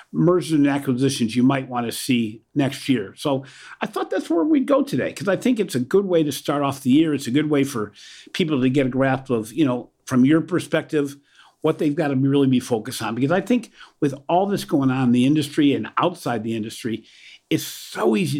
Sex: male